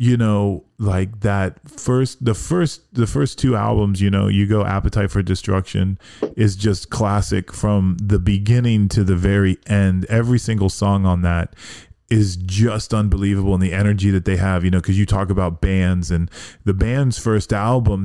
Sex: male